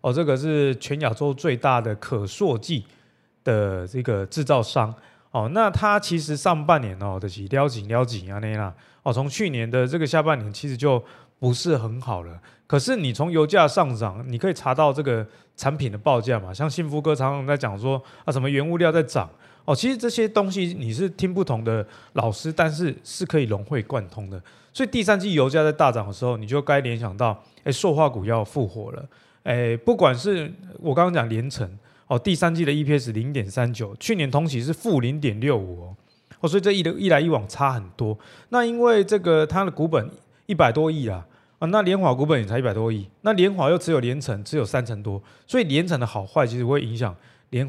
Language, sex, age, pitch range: Chinese, male, 20-39, 115-160 Hz